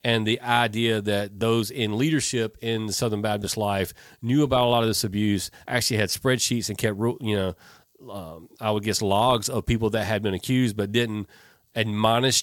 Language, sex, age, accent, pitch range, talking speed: English, male, 40-59, American, 100-115 Hz, 195 wpm